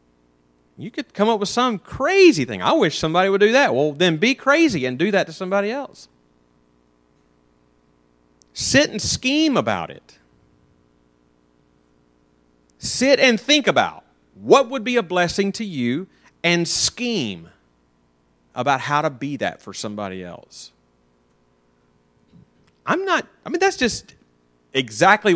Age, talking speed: 40-59, 135 wpm